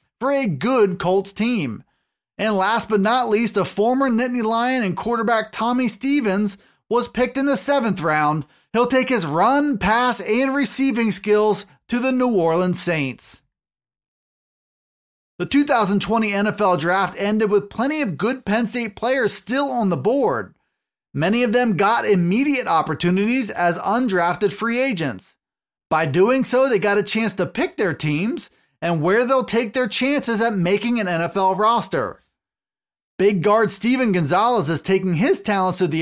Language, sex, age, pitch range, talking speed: English, male, 30-49, 185-240 Hz, 160 wpm